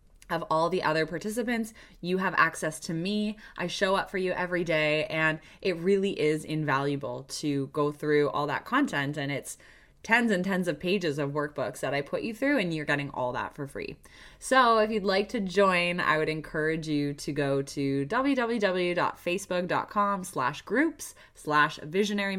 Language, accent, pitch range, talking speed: English, American, 145-190 Hz, 180 wpm